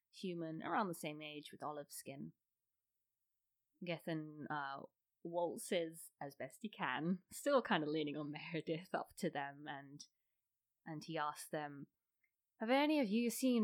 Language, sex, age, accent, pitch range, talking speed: English, female, 20-39, British, 145-185 Hz, 150 wpm